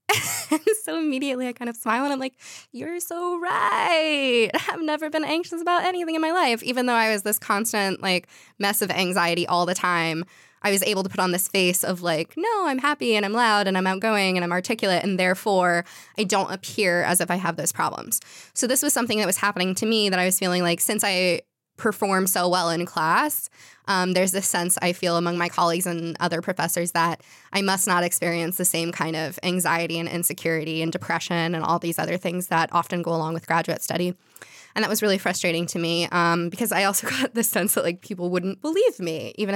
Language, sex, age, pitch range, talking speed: English, female, 10-29, 175-220 Hz, 225 wpm